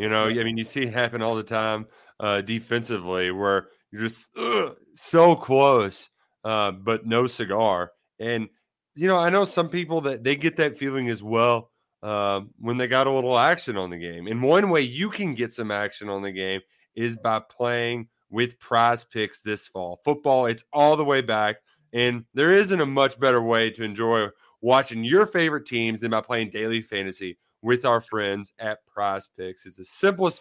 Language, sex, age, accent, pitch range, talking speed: English, male, 30-49, American, 110-150 Hz, 195 wpm